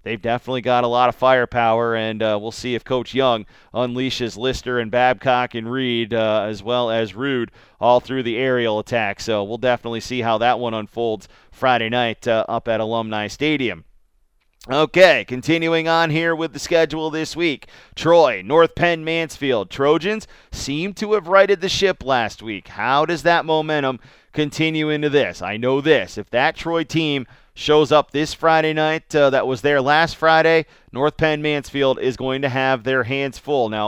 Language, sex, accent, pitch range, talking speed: English, male, American, 120-145 Hz, 180 wpm